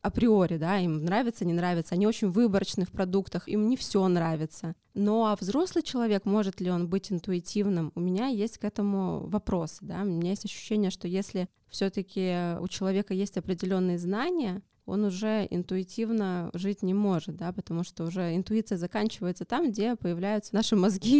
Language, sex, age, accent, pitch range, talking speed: Russian, female, 20-39, native, 185-225 Hz, 170 wpm